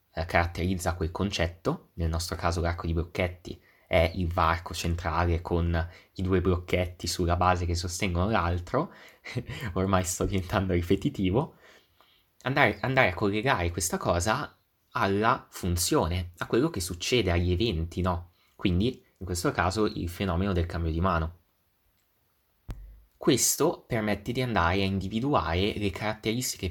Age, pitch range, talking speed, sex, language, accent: 20-39, 85-105 Hz, 135 wpm, male, Italian, native